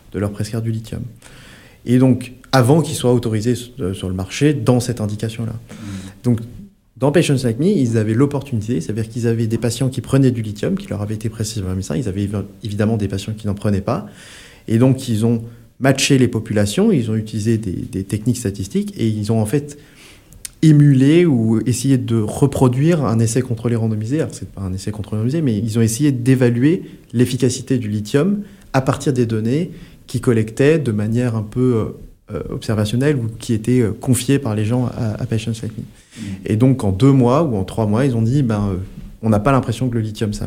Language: French